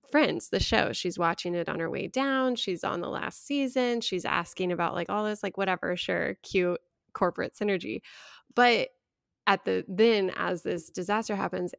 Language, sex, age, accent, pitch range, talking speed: English, female, 10-29, American, 175-210 Hz, 180 wpm